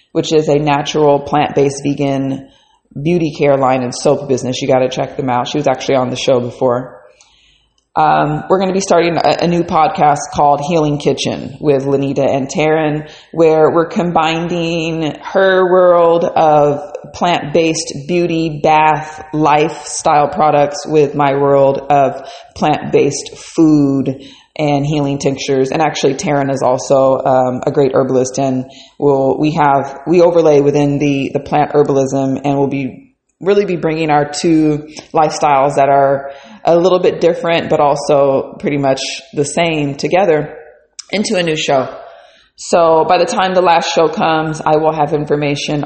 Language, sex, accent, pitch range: English, female, American, 140-160 Hz